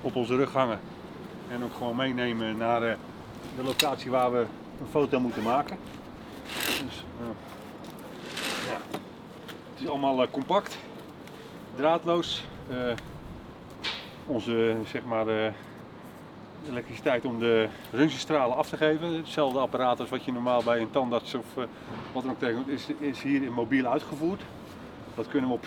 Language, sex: Dutch, male